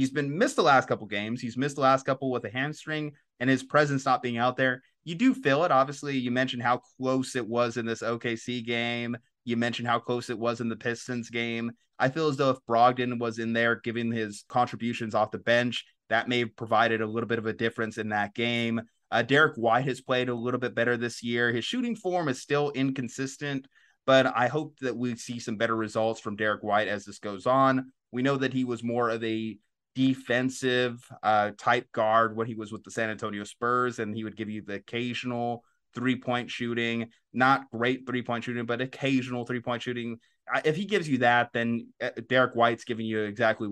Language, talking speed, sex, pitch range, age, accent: English, 215 wpm, male, 115-130 Hz, 30-49, American